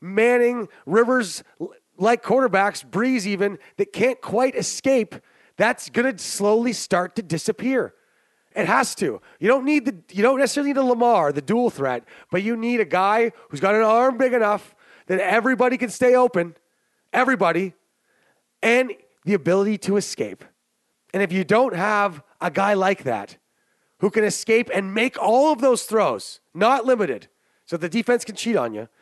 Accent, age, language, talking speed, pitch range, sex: American, 30-49, English, 170 wpm, 185-245 Hz, male